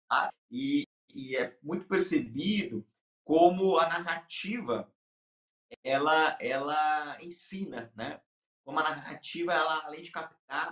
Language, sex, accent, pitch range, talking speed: Portuguese, male, Brazilian, 130-175 Hz, 110 wpm